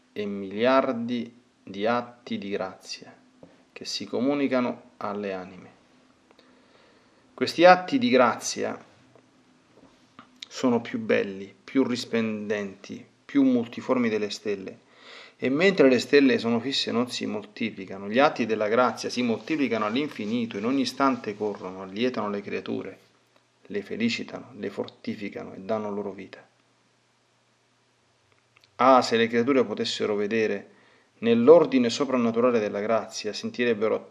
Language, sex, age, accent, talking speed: Italian, male, 40-59, native, 115 wpm